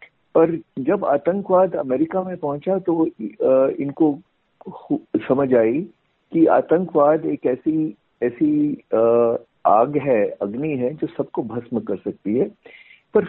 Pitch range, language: 145-200 Hz, Hindi